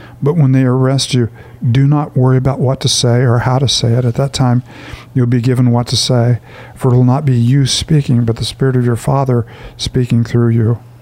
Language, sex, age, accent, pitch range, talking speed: English, male, 50-69, American, 120-130 Hz, 230 wpm